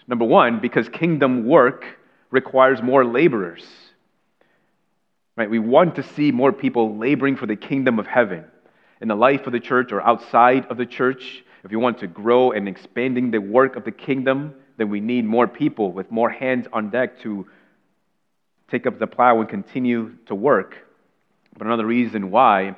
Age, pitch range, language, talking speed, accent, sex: 30-49, 105-130 Hz, English, 180 wpm, American, male